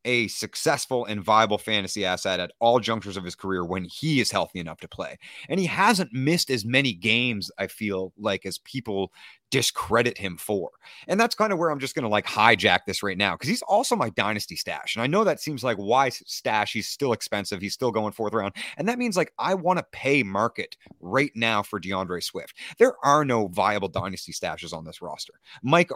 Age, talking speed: 30-49, 215 wpm